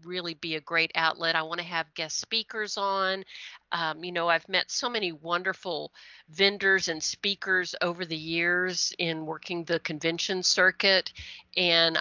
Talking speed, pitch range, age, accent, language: 160 wpm, 165-200 Hz, 50-69, American, English